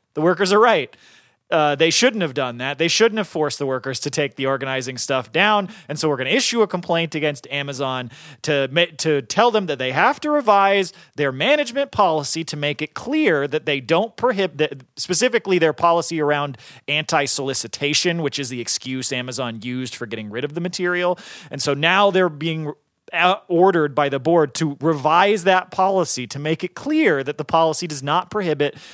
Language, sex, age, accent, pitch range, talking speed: English, male, 30-49, American, 135-180 Hz, 190 wpm